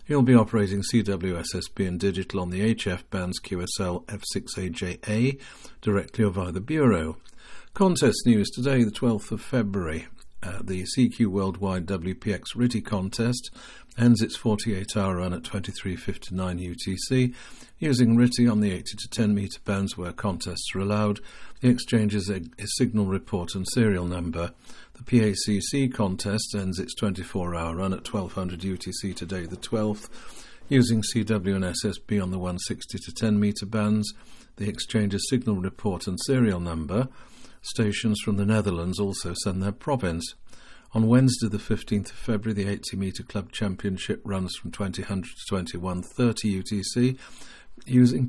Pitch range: 95-115 Hz